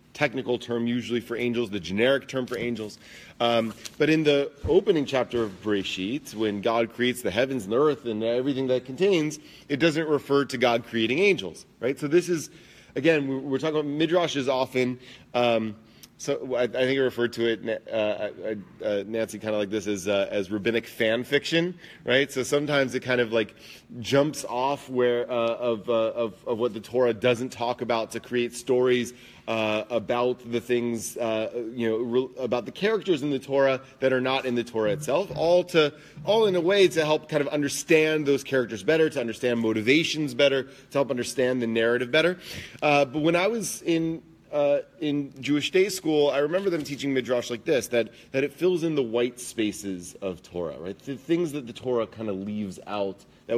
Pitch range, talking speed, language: 115-145 Hz, 200 wpm, English